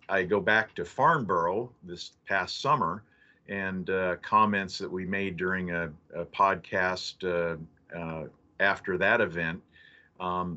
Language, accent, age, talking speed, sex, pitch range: English, American, 50-69, 135 wpm, male, 90-105 Hz